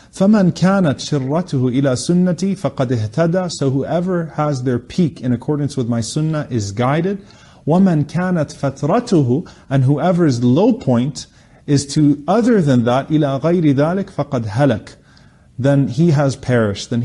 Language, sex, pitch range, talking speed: English, male, 125-165 Hz, 145 wpm